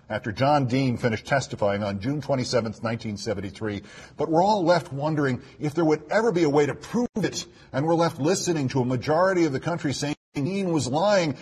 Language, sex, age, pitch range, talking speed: English, male, 50-69, 110-165 Hz, 200 wpm